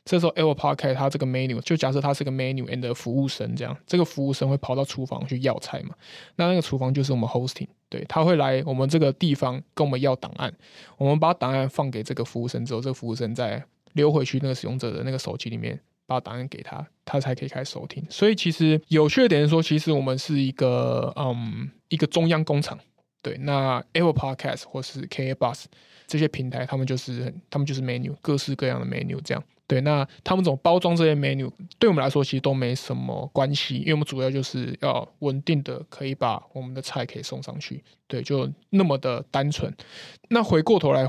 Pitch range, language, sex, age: 130-160 Hz, Chinese, male, 20-39